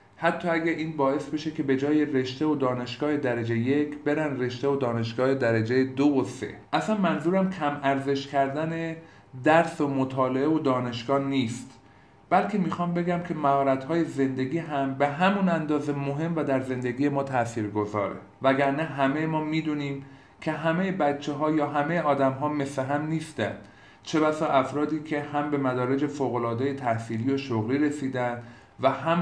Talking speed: 160 wpm